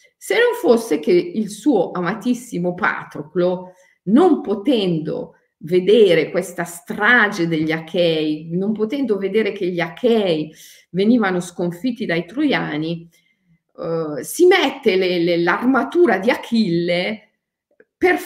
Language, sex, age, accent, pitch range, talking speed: Italian, female, 40-59, native, 170-255 Hz, 105 wpm